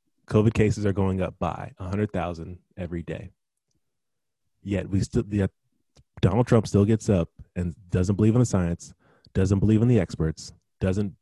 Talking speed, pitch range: 160 wpm, 90-110 Hz